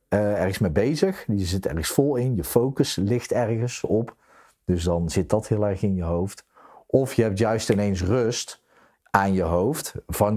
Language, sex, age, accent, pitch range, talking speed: Dutch, male, 40-59, Dutch, 85-110 Hz, 190 wpm